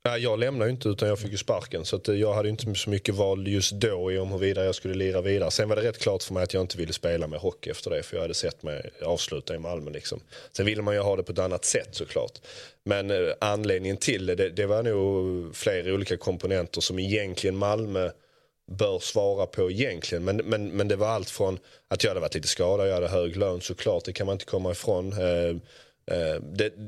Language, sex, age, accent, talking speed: Swedish, male, 30-49, native, 240 wpm